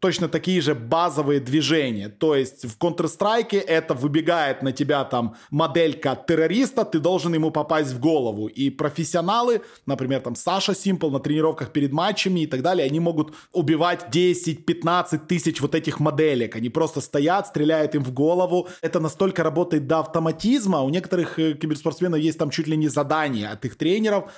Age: 20-39